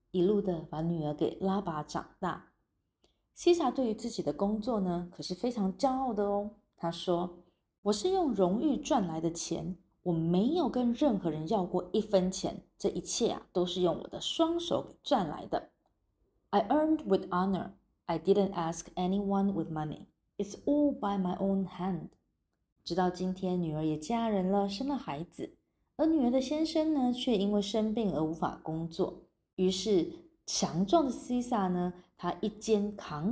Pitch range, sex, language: 170-230 Hz, female, Chinese